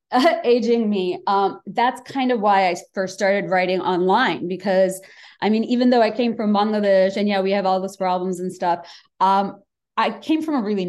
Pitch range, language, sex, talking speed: 185-250 Hz, English, female, 200 wpm